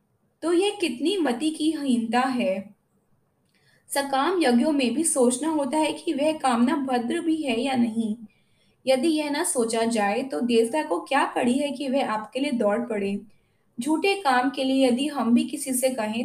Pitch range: 225-285 Hz